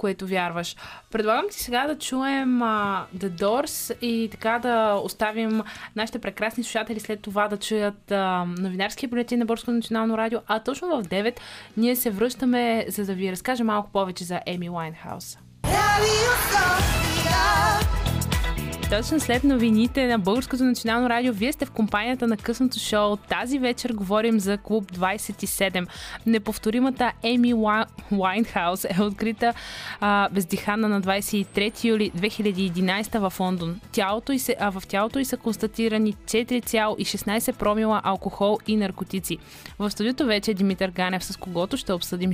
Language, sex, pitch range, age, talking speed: Bulgarian, female, 195-235 Hz, 20-39, 140 wpm